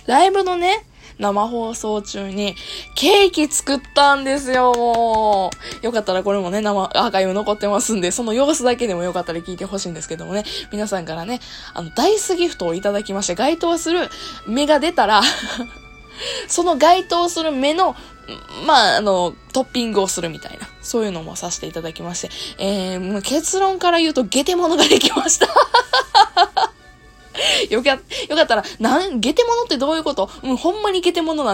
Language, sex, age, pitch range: Japanese, female, 20-39, 200-330 Hz